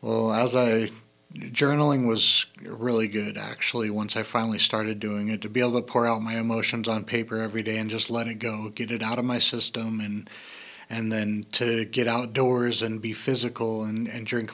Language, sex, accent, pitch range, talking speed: English, male, American, 110-120 Hz, 200 wpm